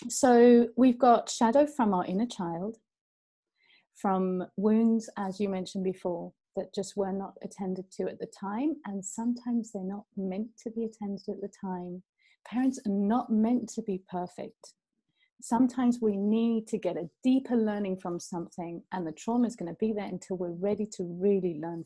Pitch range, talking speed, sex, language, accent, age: 185-235 Hz, 180 wpm, female, Spanish, British, 30-49